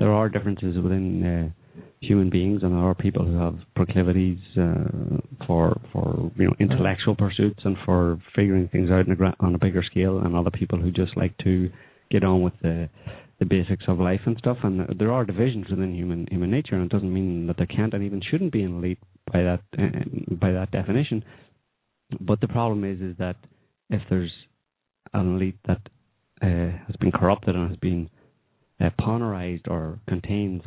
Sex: male